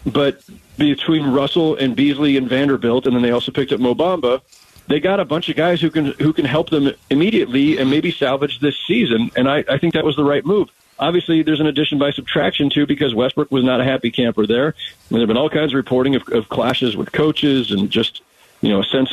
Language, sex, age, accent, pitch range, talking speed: English, male, 40-59, American, 120-155 Hz, 235 wpm